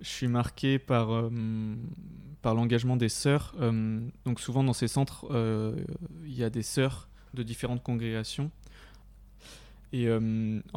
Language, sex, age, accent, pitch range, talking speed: French, male, 20-39, French, 110-125 Hz, 140 wpm